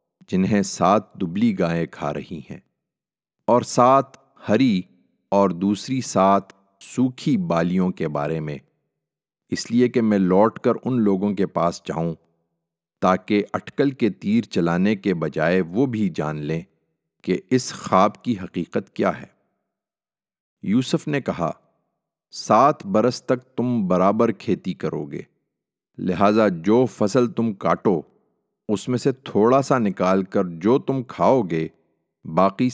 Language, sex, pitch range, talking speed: Urdu, male, 85-125 Hz, 135 wpm